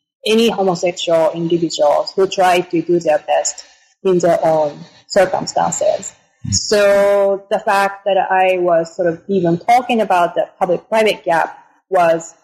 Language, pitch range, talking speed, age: English, 175-200 Hz, 135 wpm, 20-39